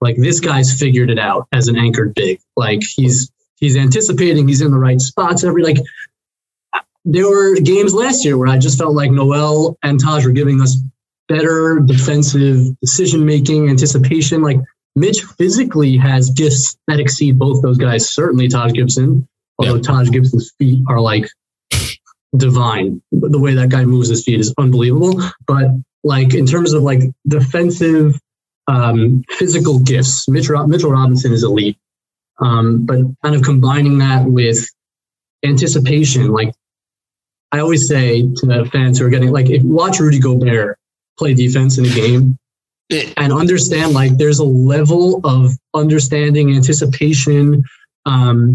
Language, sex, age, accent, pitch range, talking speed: English, male, 20-39, American, 130-150 Hz, 150 wpm